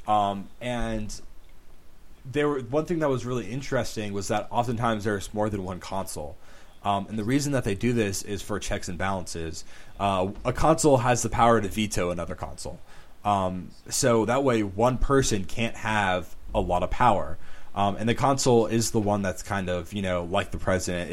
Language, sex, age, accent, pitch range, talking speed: English, male, 20-39, American, 90-120 Hz, 195 wpm